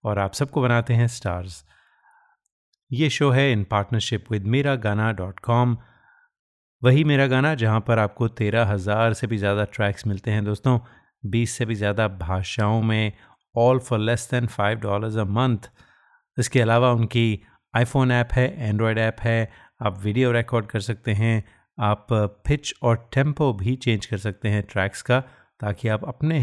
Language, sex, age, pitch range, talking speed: Hindi, male, 30-49, 105-125 Hz, 170 wpm